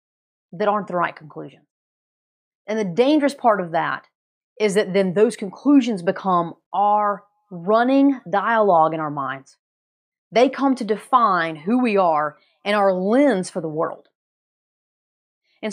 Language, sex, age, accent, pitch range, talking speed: English, female, 30-49, American, 185-250 Hz, 140 wpm